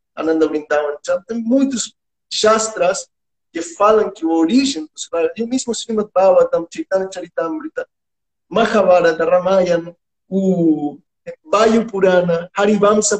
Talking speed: 110 wpm